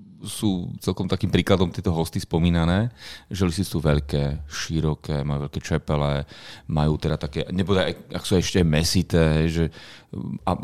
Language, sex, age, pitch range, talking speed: Slovak, male, 30-49, 75-95 Hz, 145 wpm